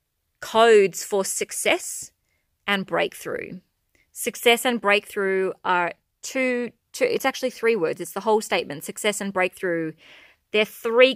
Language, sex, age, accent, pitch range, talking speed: English, female, 20-39, Australian, 180-235 Hz, 130 wpm